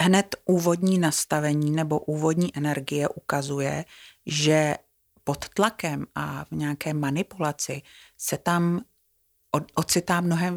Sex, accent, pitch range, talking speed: female, native, 145-180 Hz, 100 wpm